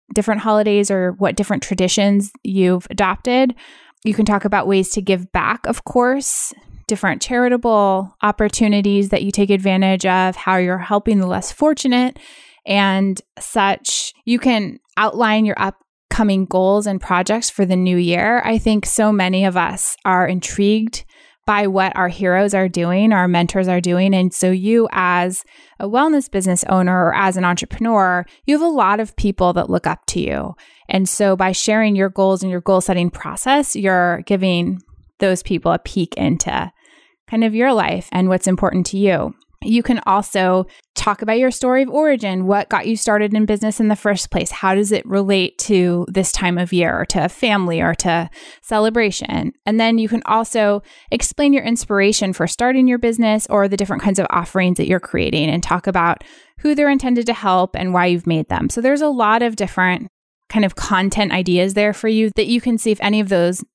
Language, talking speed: English, 190 wpm